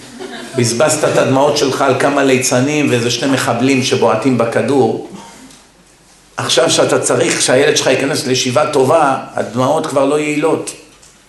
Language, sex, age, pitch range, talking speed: Hebrew, male, 50-69, 150-215 Hz, 130 wpm